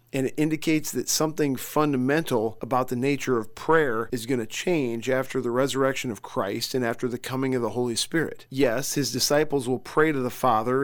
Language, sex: English, male